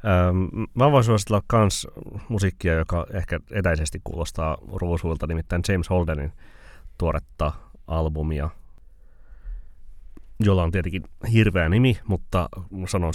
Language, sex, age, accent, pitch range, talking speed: Finnish, male, 30-49, native, 75-95 Hz, 105 wpm